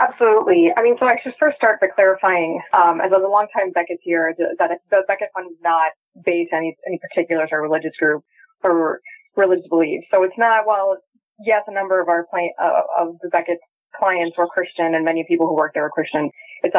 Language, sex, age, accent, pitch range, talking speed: English, female, 20-39, American, 165-215 Hz, 215 wpm